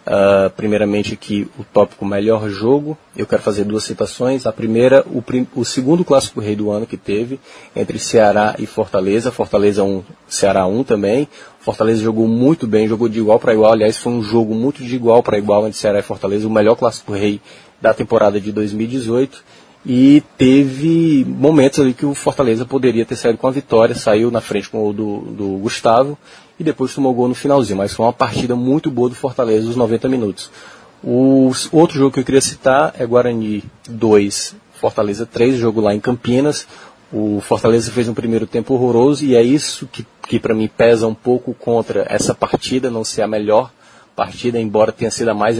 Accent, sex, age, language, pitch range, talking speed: Brazilian, male, 20-39, Portuguese, 110-130 Hz, 190 wpm